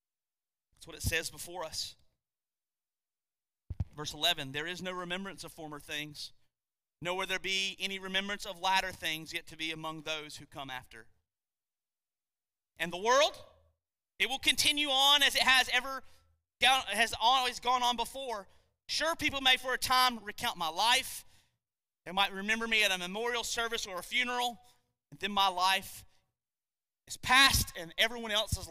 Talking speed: 160 wpm